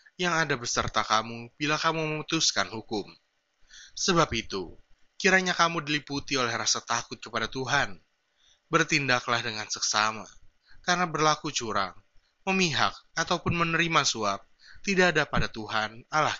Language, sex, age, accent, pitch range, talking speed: Indonesian, male, 20-39, native, 115-160 Hz, 120 wpm